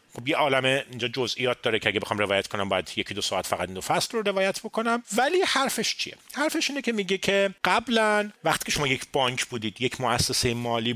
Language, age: Persian, 40-59